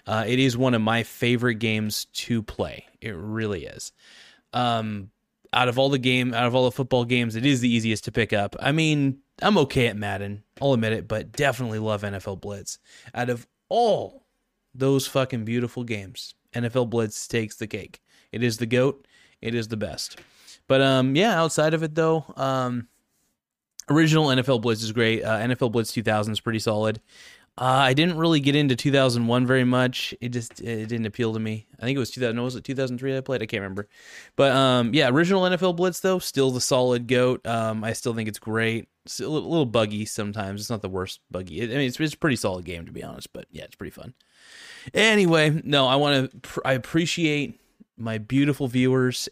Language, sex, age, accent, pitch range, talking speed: English, male, 20-39, American, 110-135 Hz, 205 wpm